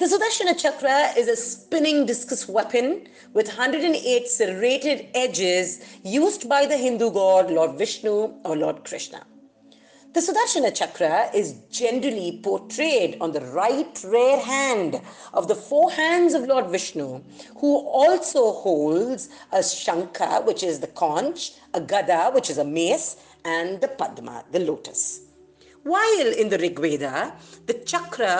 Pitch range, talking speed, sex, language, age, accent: 195-305 Hz, 140 wpm, female, English, 50-69, Indian